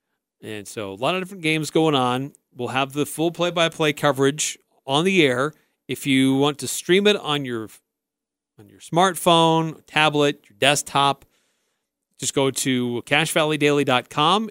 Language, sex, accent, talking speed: English, male, American, 150 wpm